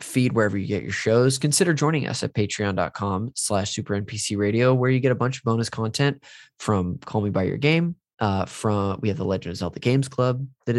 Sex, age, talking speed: male, 20-39, 220 wpm